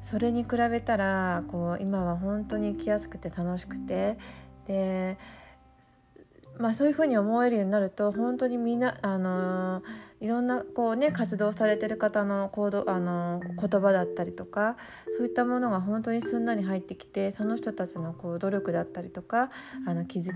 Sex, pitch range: female, 170-215 Hz